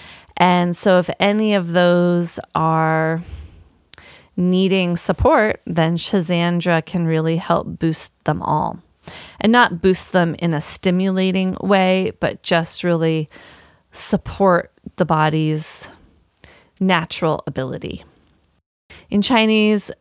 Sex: female